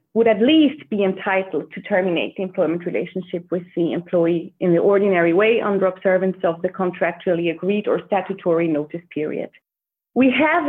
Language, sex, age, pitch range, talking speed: English, female, 30-49, 195-235 Hz, 165 wpm